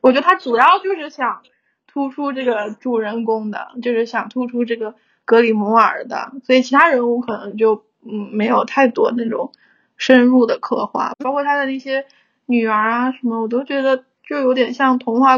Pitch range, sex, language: 235-275 Hz, female, Chinese